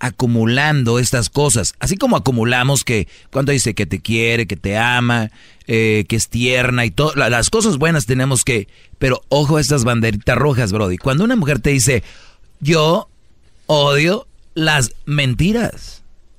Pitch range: 115-155 Hz